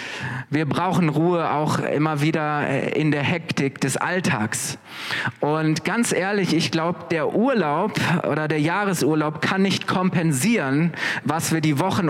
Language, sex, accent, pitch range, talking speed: German, male, German, 150-175 Hz, 140 wpm